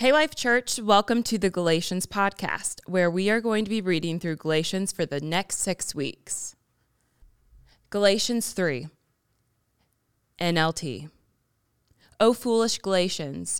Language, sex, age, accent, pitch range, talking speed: English, female, 20-39, American, 160-195 Hz, 125 wpm